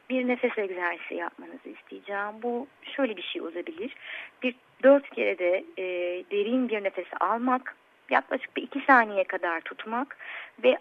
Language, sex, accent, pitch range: Turkish, female, native, 200-275 Hz